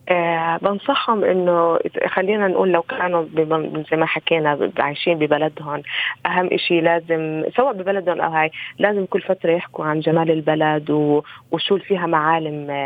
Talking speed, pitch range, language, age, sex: 135 wpm, 155-180 Hz, Arabic, 20-39, female